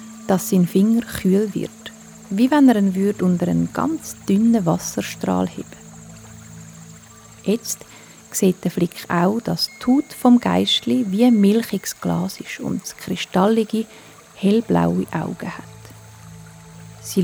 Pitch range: 150-205 Hz